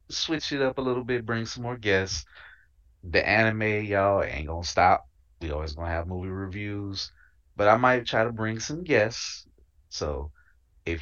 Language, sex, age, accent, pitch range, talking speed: English, male, 30-49, American, 80-100 Hz, 185 wpm